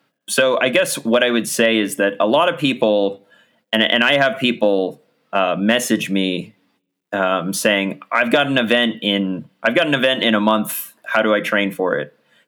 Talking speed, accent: 195 wpm, American